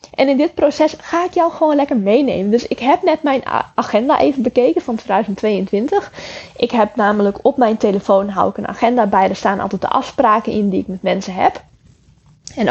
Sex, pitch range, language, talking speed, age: female, 205-255 Hz, Dutch, 205 wpm, 10-29